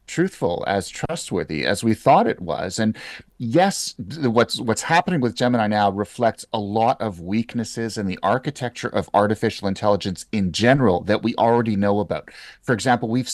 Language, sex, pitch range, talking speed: English, male, 100-120 Hz, 165 wpm